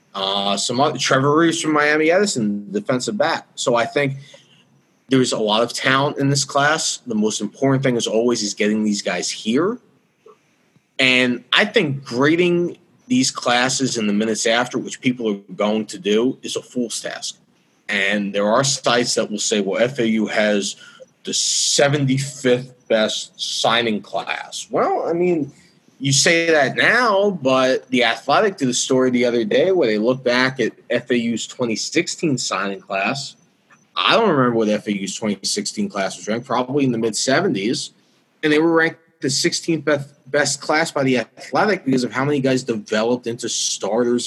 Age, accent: 30-49, American